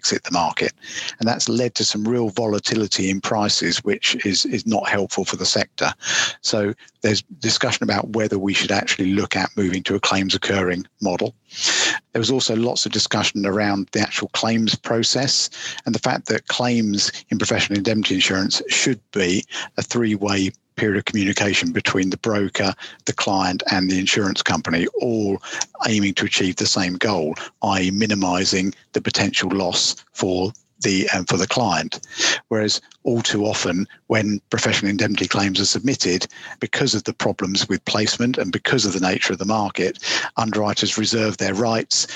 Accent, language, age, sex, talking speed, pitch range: British, English, 50-69, male, 170 wpm, 100-115 Hz